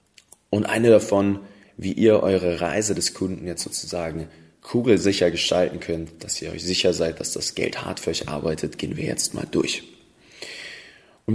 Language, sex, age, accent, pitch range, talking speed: German, male, 20-39, German, 85-105 Hz, 170 wpm